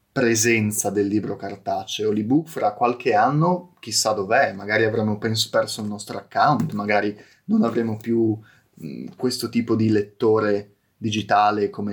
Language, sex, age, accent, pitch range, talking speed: Italian, male, 30-49, native, 105-125 Hz, 130 wpm